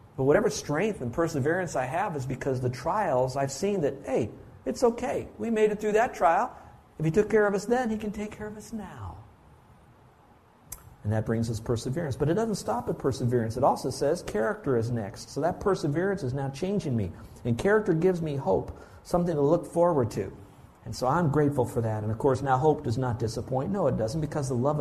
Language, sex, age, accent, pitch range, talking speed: English, male, 50-69, American, 125-160 Hz, 220 wpm